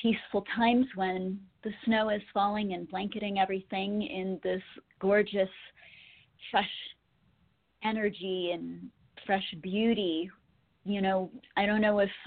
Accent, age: American, 40-59